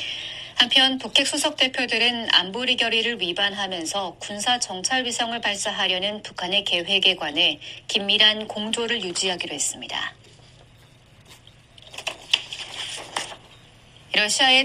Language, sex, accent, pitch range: Korean, female, native, 185-240 Hz